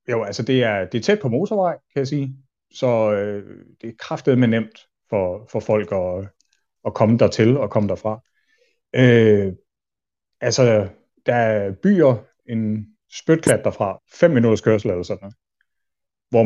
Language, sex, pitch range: Danish, male, 100-130 Hz